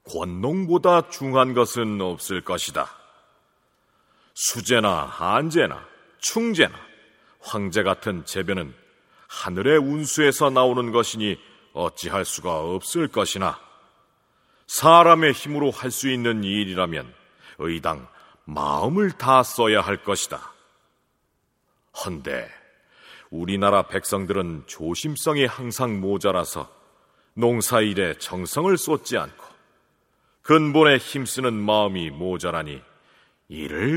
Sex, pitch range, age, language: male, 105-155 Hz, 40-59, Korean